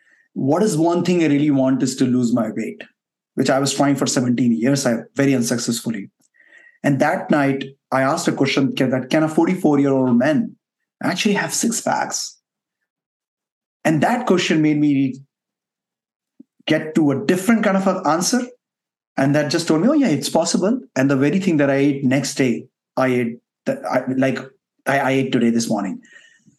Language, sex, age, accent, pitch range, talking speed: English, male, 30-49, Indian, 140-195 Hz, 185 wpm